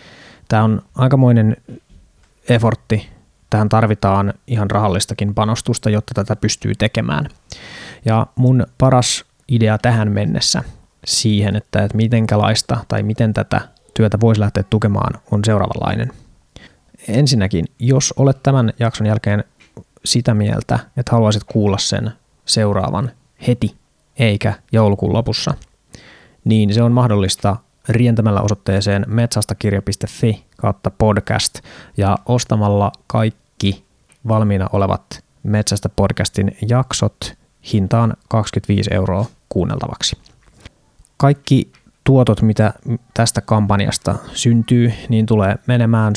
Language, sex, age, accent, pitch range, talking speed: Finnish, male, 20-39, native, 105-120 Hz, 100 wpm